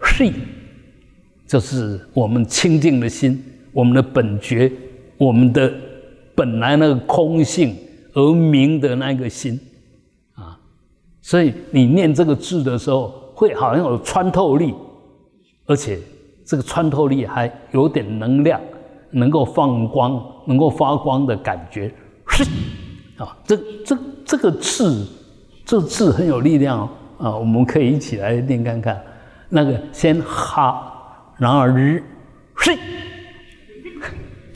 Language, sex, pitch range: Chinese, male, 125-165 Hz